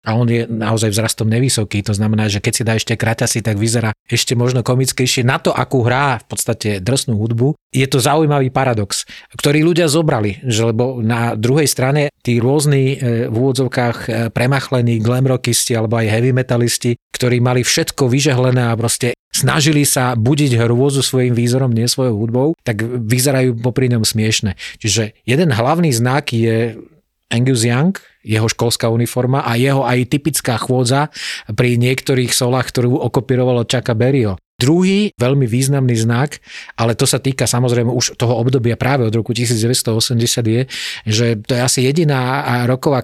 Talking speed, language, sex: 160 wpm, Slovak, male